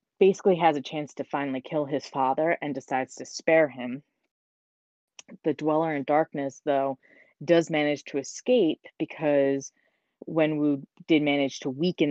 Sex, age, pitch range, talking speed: female, 20-39, 140-165 Hz, 145 wpm